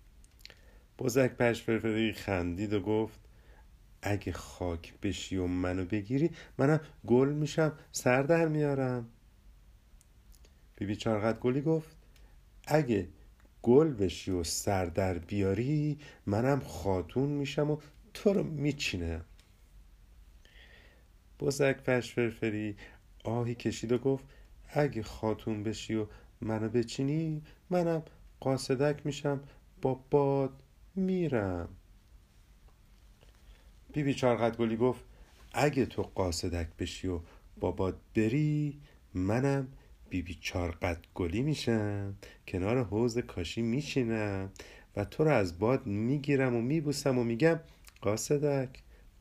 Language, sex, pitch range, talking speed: Persian, male, 95-140 Hz, 100 wpm